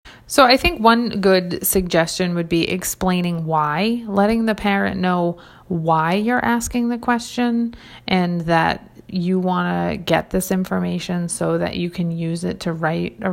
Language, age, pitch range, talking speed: English, 30-49, 165-200 Hz, 160 wpm